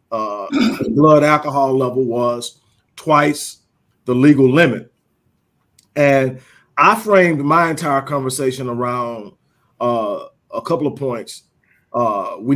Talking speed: 115 wpm